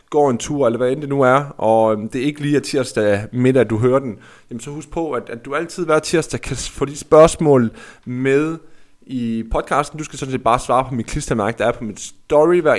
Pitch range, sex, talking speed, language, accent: 120-160 Hz, male, 250 wpm, Danish, native